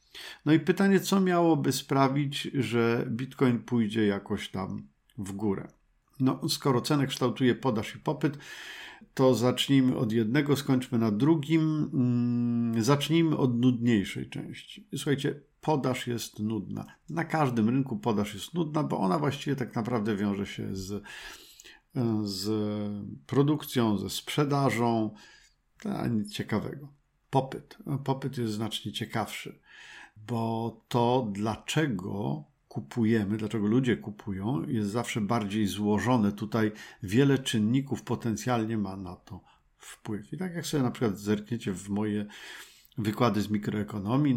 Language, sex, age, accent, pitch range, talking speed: Polish, male, 50-69, native, 105-135 Hz, 120 wpm